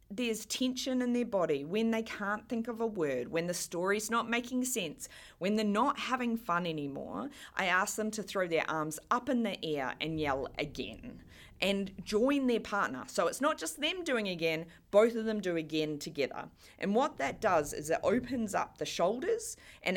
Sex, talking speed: female, 200 wpm